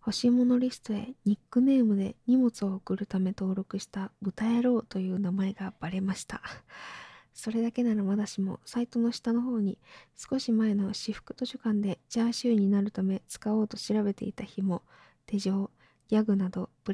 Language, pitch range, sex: Japanese, 200-225 Hz, female